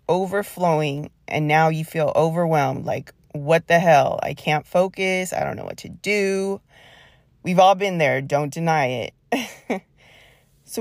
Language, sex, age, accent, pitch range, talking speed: English, female, 30-49, American, 150-180 Hz, 150 wpm